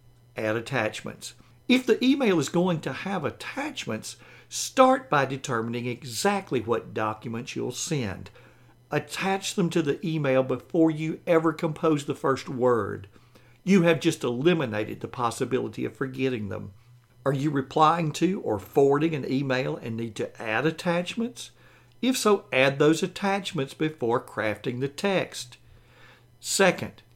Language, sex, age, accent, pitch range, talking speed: English, male, 60-79, American, 120-170 Hz, 135 wpm